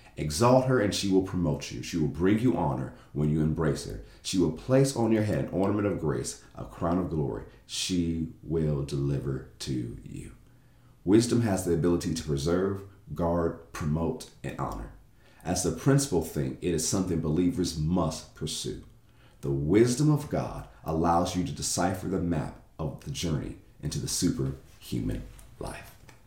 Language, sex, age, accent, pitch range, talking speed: English, male, 40-59, American, 80-110 Hz, 165 wpm